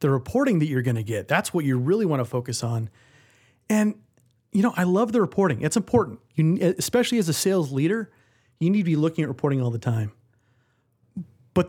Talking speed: 210 wpm